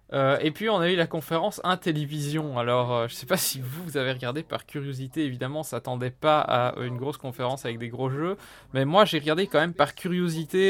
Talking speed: 230 wpm